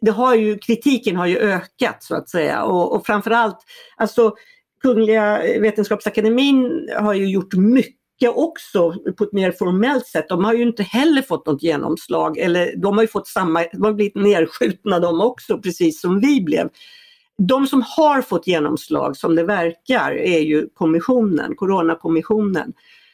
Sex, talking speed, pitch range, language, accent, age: female, 160 wpm, 180-245 Hz, Swedish, native, 50-69